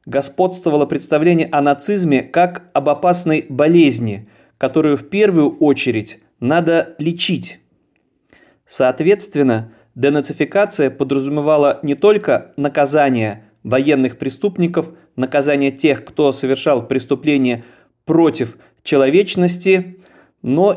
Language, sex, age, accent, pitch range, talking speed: Russian, male, 30-49, native, 135-165 Hz, 85 wpm